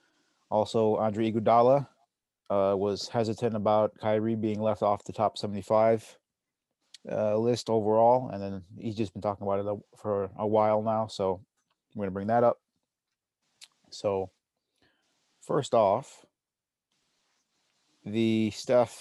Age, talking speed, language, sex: 30-49, 125 wpm, English, male